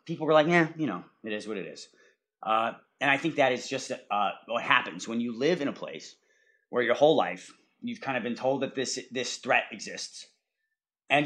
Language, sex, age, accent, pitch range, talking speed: English, male, 30-49, American, 115-150 Hz, 225 wpm